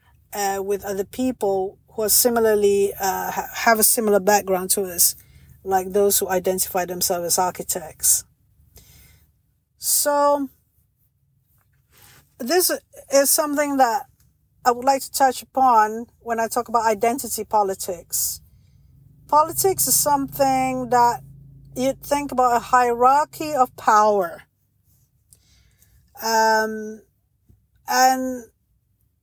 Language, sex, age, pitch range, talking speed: English, female, 50-69, 185-260 Hz, 105 wpm